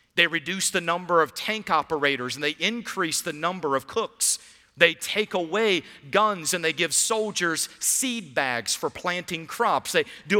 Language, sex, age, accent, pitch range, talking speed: English, male, 50-69, American, 160-220 Hz, 165 wpm